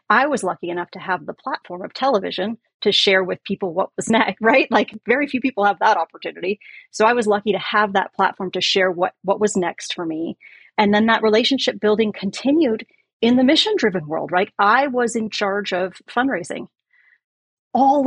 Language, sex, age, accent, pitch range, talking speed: English, female, 30-49, American, 185-225 Hz, 195 wpm